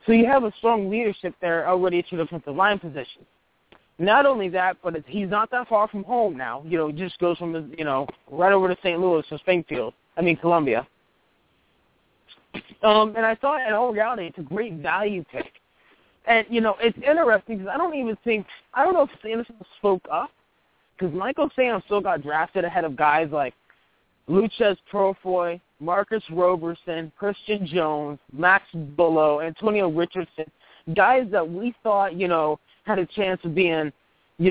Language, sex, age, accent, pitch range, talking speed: English, male, 20-39, American, 170-215 Hz, 185 wpm